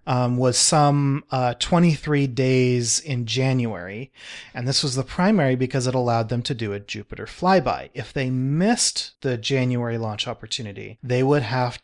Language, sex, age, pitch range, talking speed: English, male, 30-49, 120-150 Hz, 160 wpm